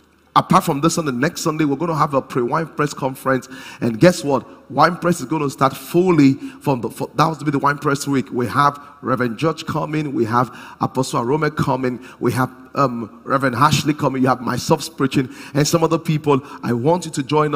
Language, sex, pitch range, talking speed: English, male, 130-160 Hz, 220 wpm